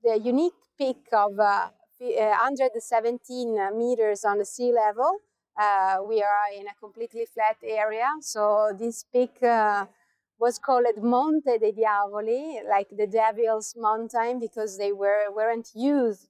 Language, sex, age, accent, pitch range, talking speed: English, female, 30-49, Italian, 215-250 Hz, 135 wpm